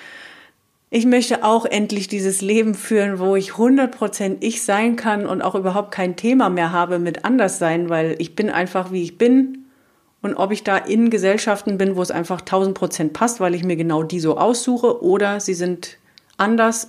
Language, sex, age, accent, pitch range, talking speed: German, female, 40-59, German, 170-225 Hz, 190 wpm